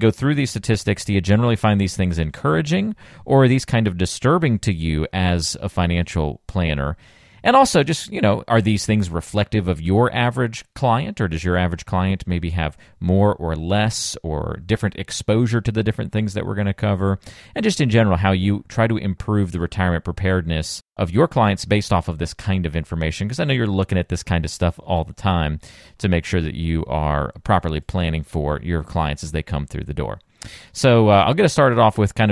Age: 40-59